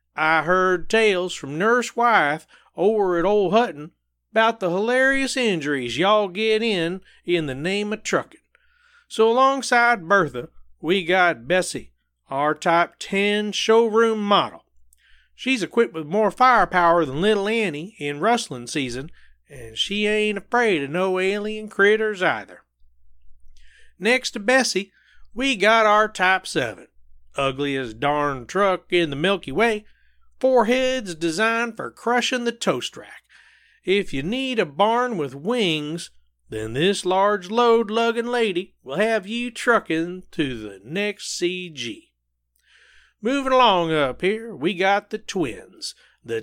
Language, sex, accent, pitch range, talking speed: English, male, American, 160-225 Hz, 135 wpm